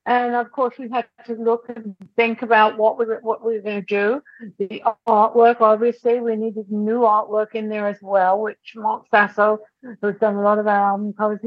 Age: 50-69